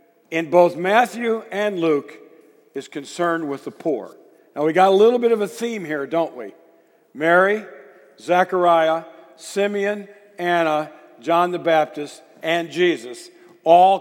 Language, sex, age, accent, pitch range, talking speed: English, male, 50-69, American, 150-210 Hz, 135 wpm